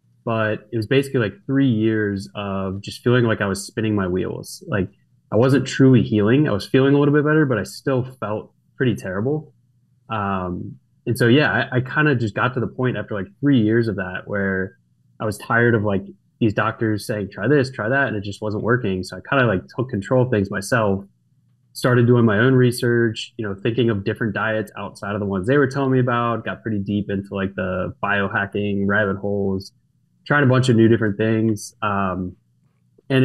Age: 20-39